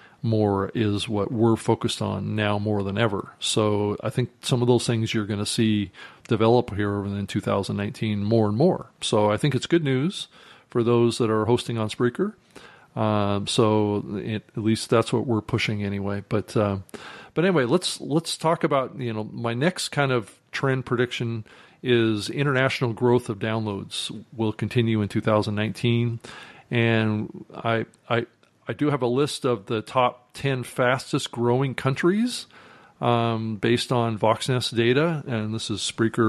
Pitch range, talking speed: 105-125 Hz, 165 wpm